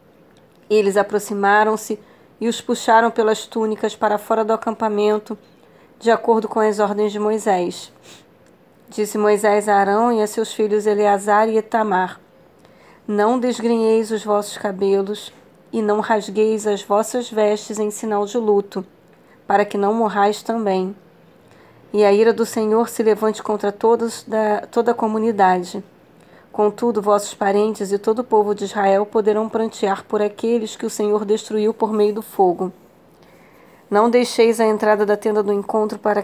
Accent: Brazilian